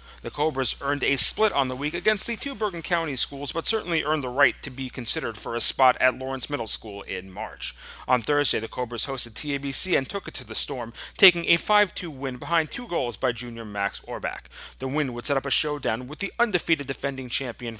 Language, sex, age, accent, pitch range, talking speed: English, male, 30-49, American, 120-165 Hz, 225 wpm